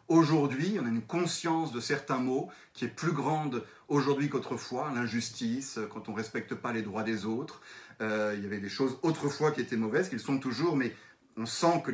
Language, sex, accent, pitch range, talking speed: French, male, French, 115-155 Hz, 205 wpm